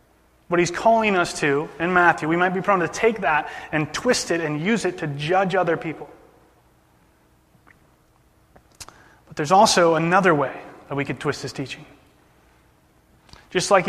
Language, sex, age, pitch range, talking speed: English, male, 30-49, 155-185 Hz, 160 wpm